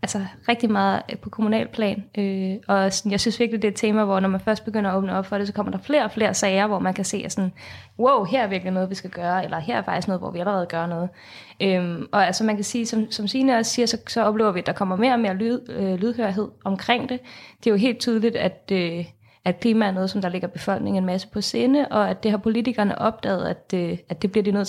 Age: 20-39